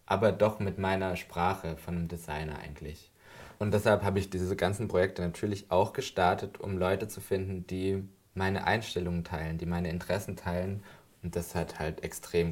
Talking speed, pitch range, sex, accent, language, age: 175 wpm, 85-95 Hz, male, German, German, 20-39